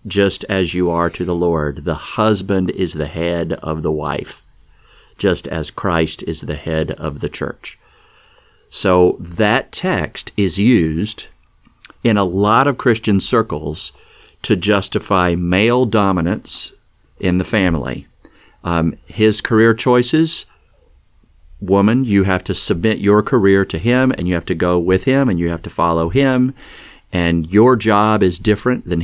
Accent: American